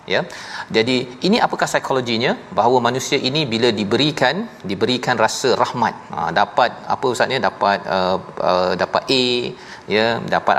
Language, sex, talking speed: Malayalam, male, 145 wpm